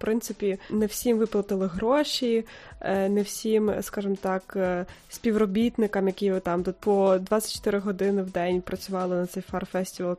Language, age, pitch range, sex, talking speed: Ukrainian, 20-39, 190-220 Hz, female, 130 wpm